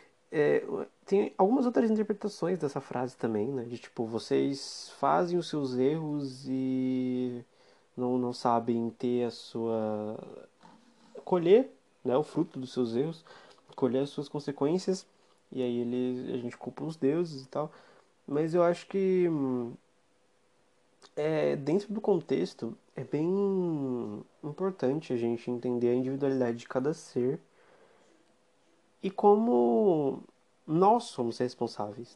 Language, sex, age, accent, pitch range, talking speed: Portuguese, male, 20-39, Brazilian, 120-180 Hz, 125 wpm